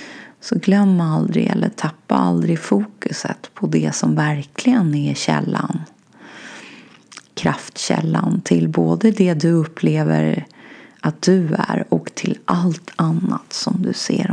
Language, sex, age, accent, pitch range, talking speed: Swedish, female, 30-49, native, 155-205 Hz, 120 wpm